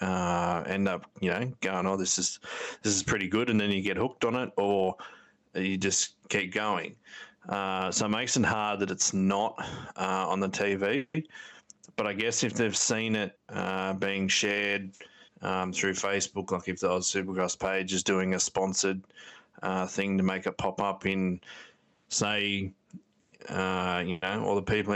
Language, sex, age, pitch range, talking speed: English, male, 20-39, 95-105 Hz, 185 wpm